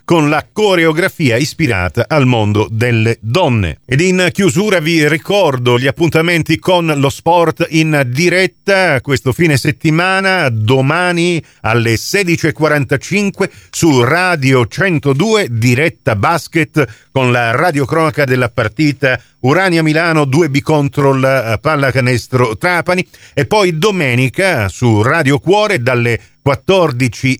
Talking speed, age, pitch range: 110 wpm, 50-69, 125-180 Hz